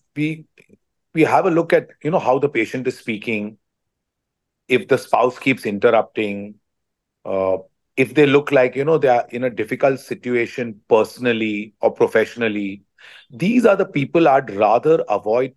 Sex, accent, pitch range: male, Indian, 110-145 Hz